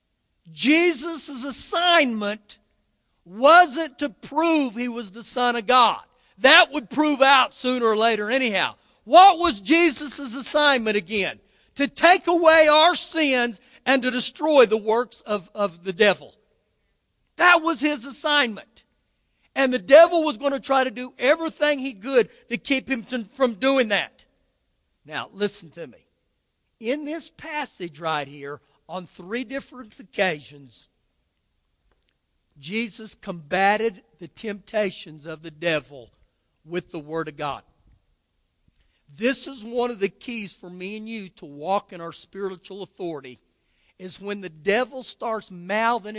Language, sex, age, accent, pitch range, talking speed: English, male, 50-69, American, 185-270 Hz, 140 wpm